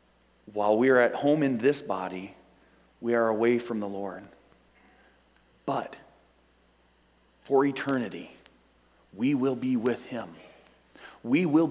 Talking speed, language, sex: 125 wpm, English, male